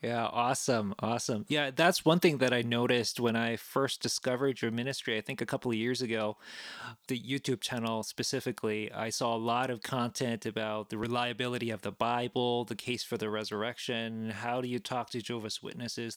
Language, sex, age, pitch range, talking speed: English, male, 20-39, 115-135 Hz, 190 wpm